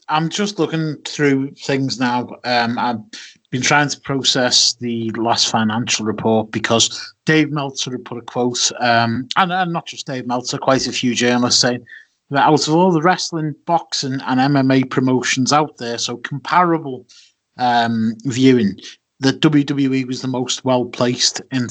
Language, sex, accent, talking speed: English, male, British, 160 wpm